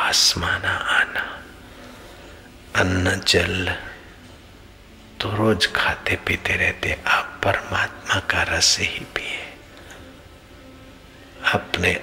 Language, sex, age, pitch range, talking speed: Hindi, male, 60-79, 85-95 Hz, 80 wpm